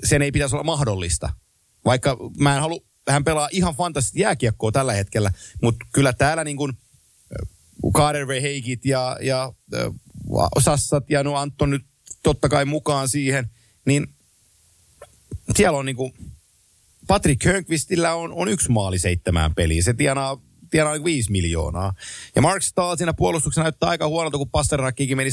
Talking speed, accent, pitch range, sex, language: 145 wpm, native, 115-155 Hz, male, Finnish